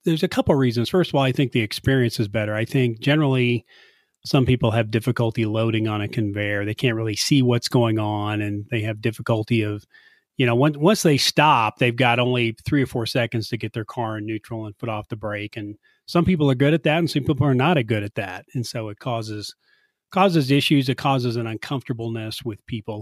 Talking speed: 230 wpm